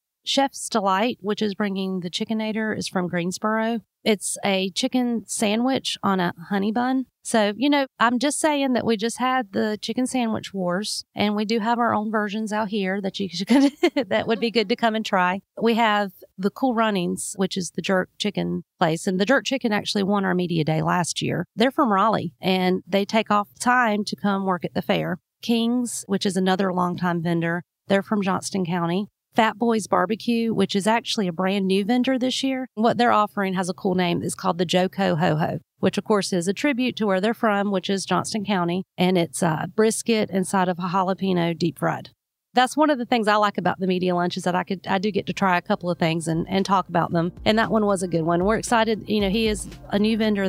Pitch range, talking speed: 180-225 Hz, 225 wpm